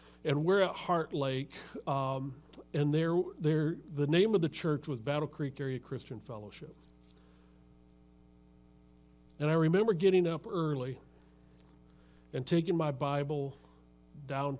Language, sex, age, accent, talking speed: English, male, 50-69, American, 125 wpm